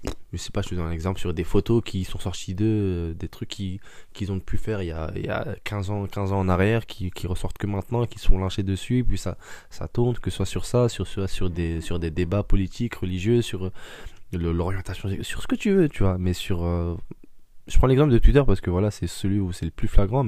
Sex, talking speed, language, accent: male, 265 wpm, French, French